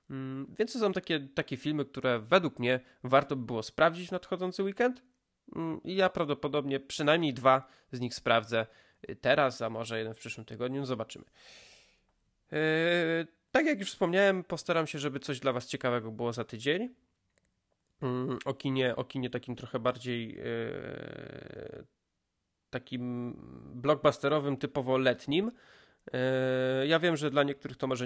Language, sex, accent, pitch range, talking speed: Polish, male, native, 120-155 Hz, 135 wpm